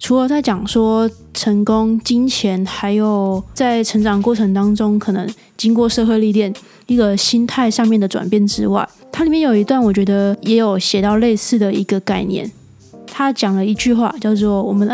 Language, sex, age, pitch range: Chinese, female, 20-39, 205-245 Hz